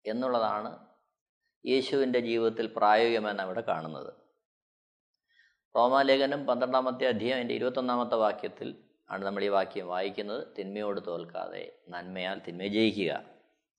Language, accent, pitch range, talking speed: Malayalam, native, 110-150 Hz, 95 wpm